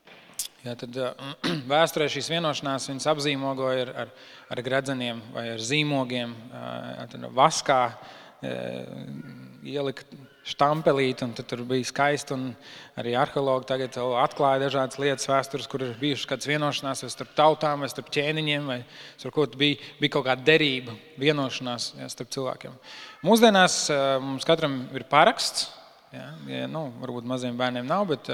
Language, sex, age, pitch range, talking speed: English, male, 20-39, 125-150 Hz, 150 wpm